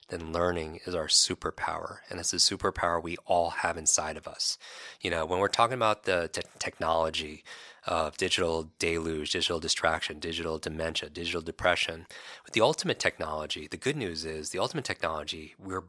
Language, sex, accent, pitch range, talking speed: English, male, American, 80-105 Hz, 165 wpm